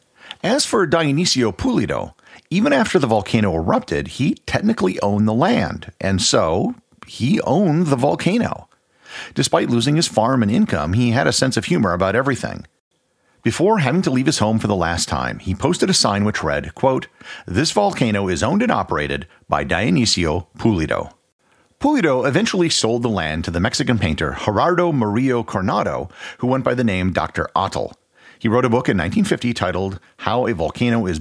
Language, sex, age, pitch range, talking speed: English, male, 40-59, 90-125 Hz, 175 wpm